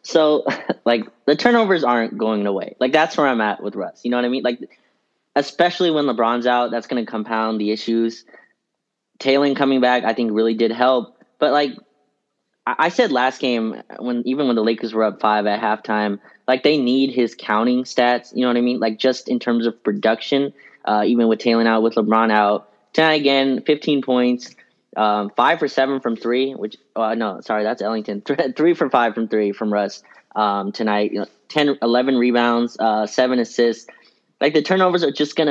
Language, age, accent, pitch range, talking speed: English, 20-39, American, 115-135 Hz, 200 wpm